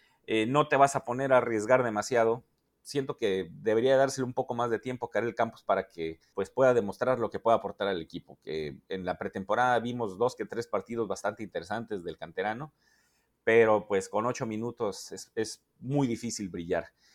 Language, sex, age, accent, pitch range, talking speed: Spanish, male, 40-59, Mexican, 105-135 Hz, 195 wpm